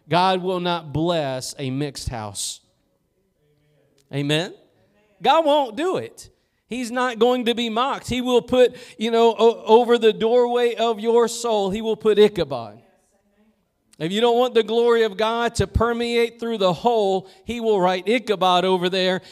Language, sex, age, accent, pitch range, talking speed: English, male, 40-59, American, 185-230 Hz, 160 wpm